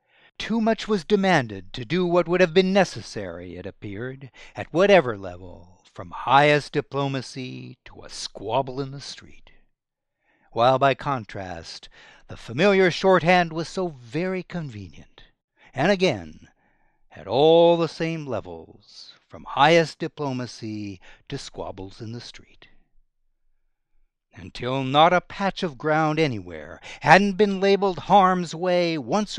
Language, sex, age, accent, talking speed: English, male, 60-79, American, 130 wpm